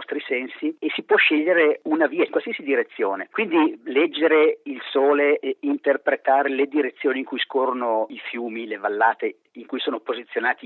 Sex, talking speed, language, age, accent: male, 165 wpm, English, 40-59, Italian